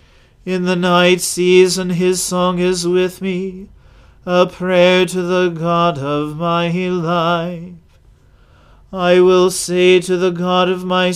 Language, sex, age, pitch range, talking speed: English, male, 40-59, 170-185 Hz, 135 wpm